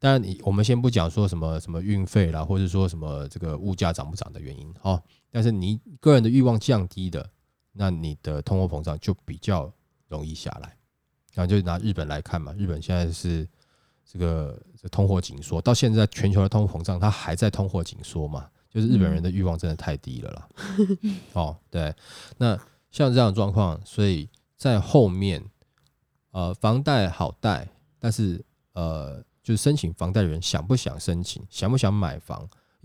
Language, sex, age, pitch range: Chinese, male, 20-39, 85-115 Hz